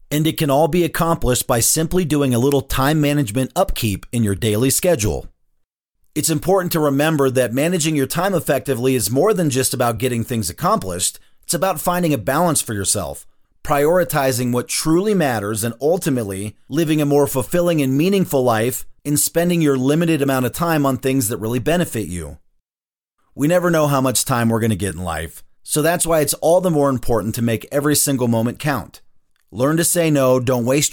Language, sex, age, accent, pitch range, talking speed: English, male, 40-59, American, 120-155 Hz, 190 wpm